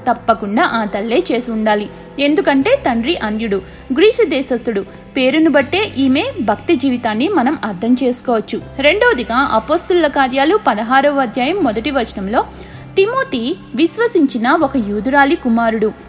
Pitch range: 230-315 Hz